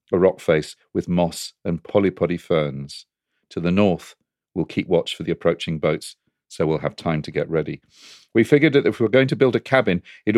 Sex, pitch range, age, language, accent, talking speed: male, 85-110 Hz, 40-59, English, British, 215 wpm